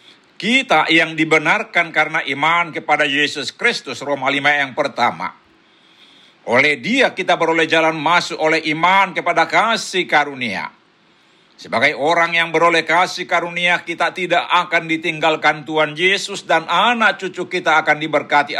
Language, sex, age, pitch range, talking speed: Indonesian, male, 60-79, 150-185 Hz, 130 wpm